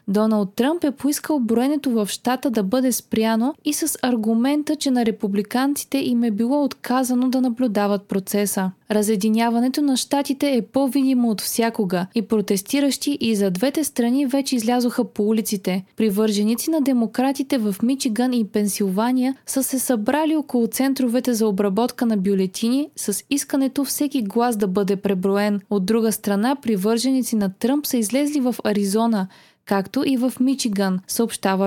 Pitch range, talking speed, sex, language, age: 210-265 Hz, 150 wpm, female, Bulgarian, 20-39